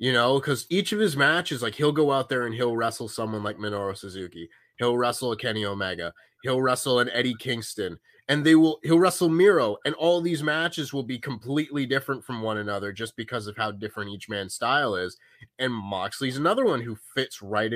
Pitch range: 115-150 Hz